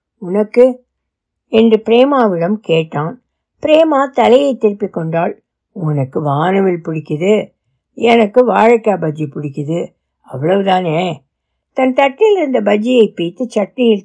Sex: female